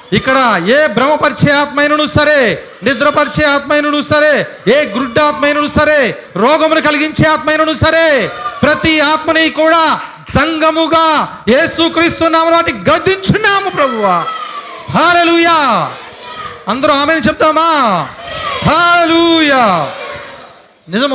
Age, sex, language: 40-59, male, Telugu